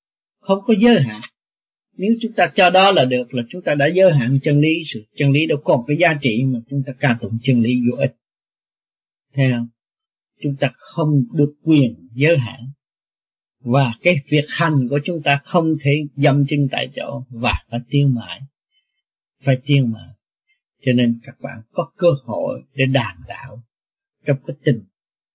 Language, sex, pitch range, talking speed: Vietnamese, male, 120-155 Hz, 185 wpm